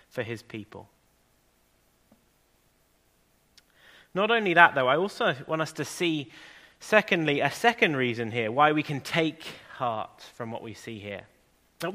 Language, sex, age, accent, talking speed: English, male, 30-49, British, 145 wpm